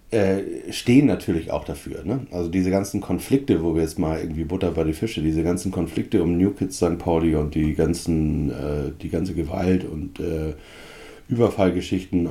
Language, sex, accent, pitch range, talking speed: German, male, German, 80-100 Hz, 165 wpm